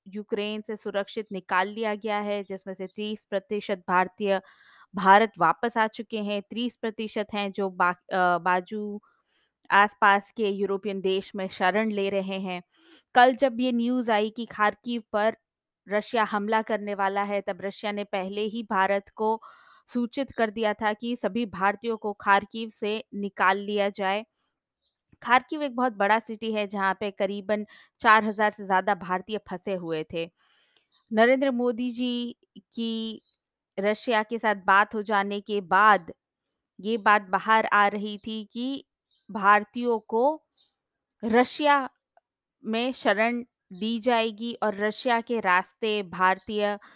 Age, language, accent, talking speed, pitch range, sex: 20-39, Hindi, native, 145 wpm, 195-230 Hz, female